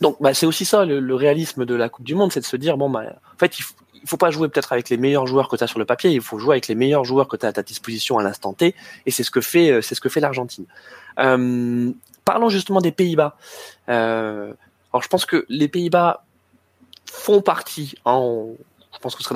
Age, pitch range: 20-39, 120-165 Hz